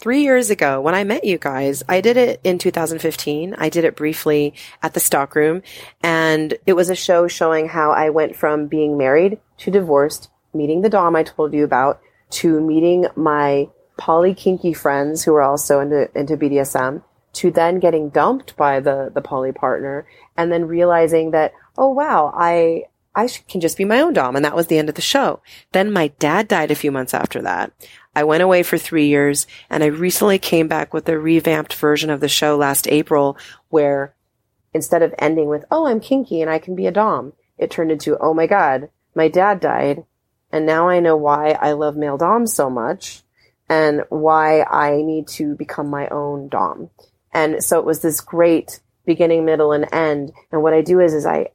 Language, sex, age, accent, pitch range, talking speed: English, female, 30-49, American, 145-170 Hz, 200 wpm